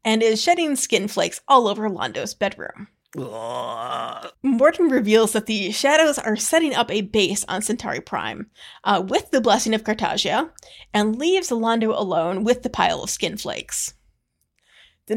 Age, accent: 30-49, American